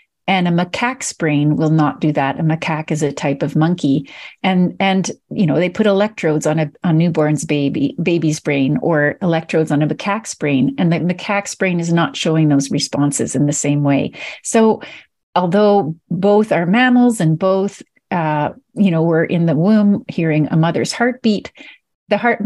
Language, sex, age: English, female, 40-59